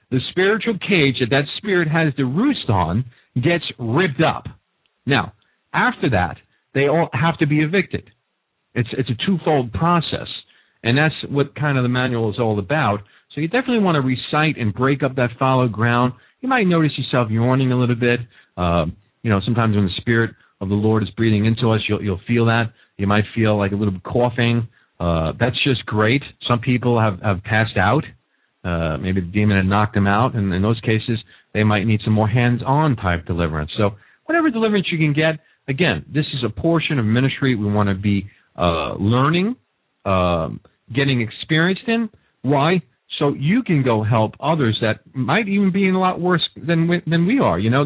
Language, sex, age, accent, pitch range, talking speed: English, male, 40-59, American, 110-155 Hz, 200 wpm